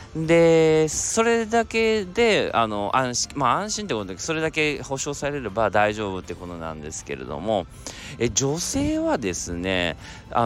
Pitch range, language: 95-135 Hz, Japanese